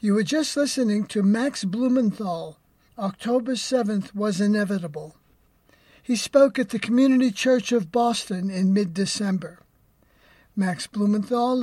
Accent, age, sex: American, 60-79, male